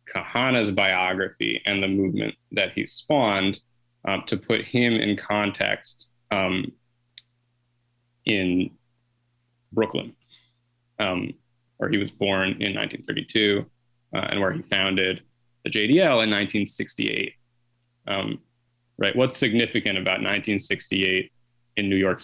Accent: American